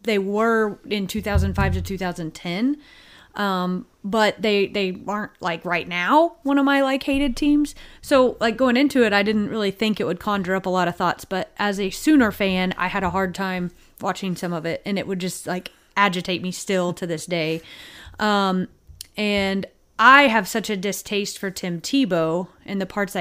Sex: female